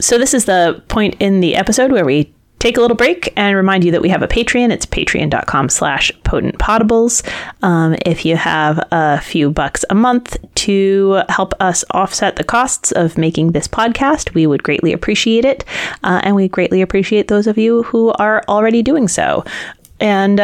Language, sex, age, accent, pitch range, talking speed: English, female, 30-49, American, 175-215 Hz, 190 wpm